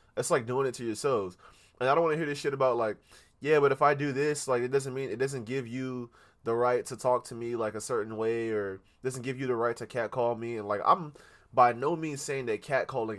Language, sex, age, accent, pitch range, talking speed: English, male, 20-39, American, 110-135 Hz, 265 wpm